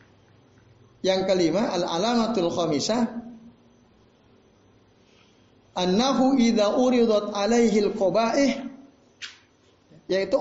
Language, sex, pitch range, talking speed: Indonesian, male, 150-225 Hz, 60 wpm